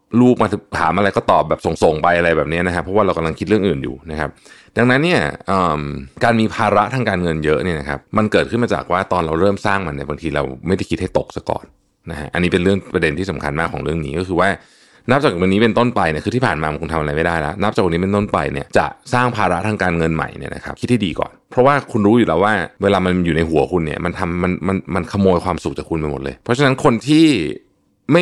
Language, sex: Thai, male